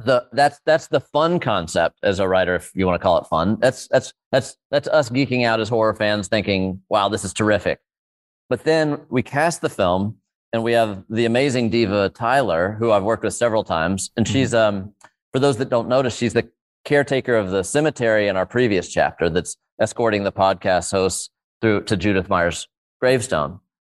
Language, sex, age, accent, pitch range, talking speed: English, male, 30-49, American, 95-120 Hz, 195 wpm